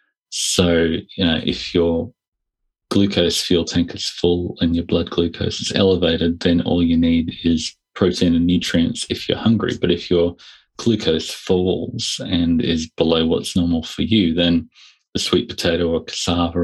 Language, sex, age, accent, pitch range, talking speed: Spanish, male, 30-49, Australian, 85-90 Hz, 160 wpm